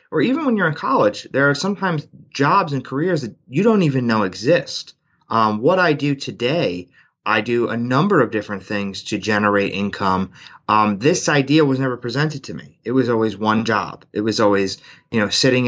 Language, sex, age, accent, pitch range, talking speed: English, male, 30-49, American, 105-140 Hz, 200 wpm